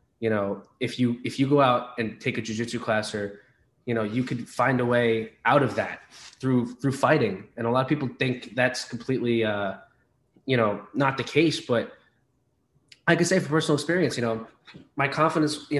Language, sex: English, male